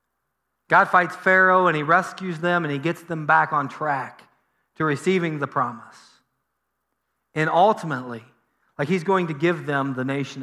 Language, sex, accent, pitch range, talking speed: English, male, American, 135-175 Hz, 160 wpm